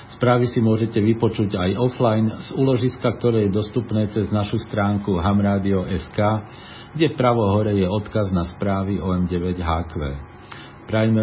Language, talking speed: Slovak, 130 wpm